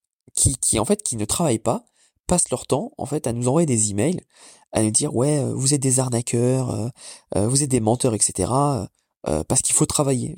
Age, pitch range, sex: 20-39, 120-165 Hz, male